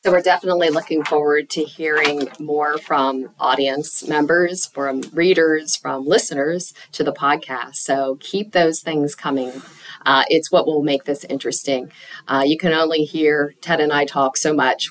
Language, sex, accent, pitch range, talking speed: English, female, American, 140-160 Hz, 165 wpm